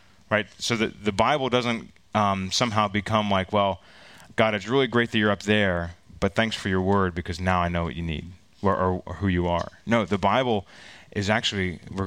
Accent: American